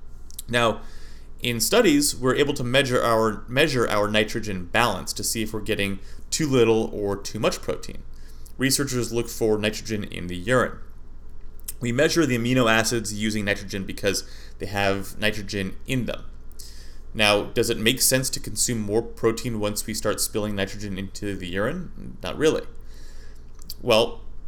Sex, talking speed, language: male, 150 wpm, English